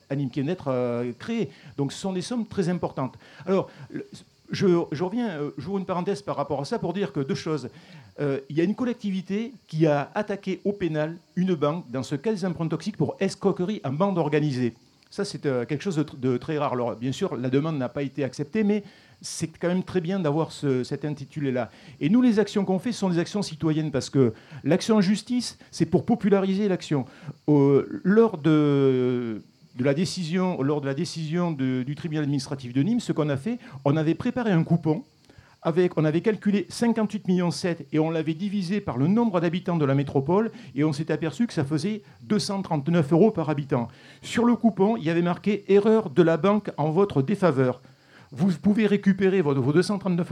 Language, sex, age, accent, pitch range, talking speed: French, male, 50-69, French, 145-195 Hz, 205 wpm